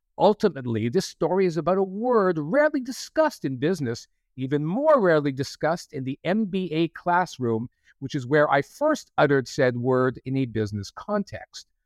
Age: 50-69